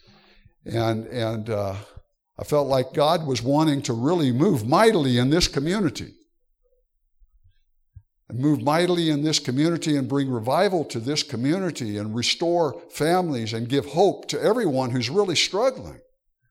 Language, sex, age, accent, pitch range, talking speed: English, male, 60-79, American, 125-175 Hz, 140 wpm